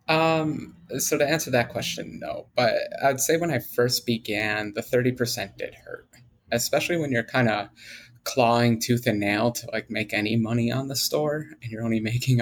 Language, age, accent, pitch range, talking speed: English, 30-49, American, 115-145 Hz, 195 wpm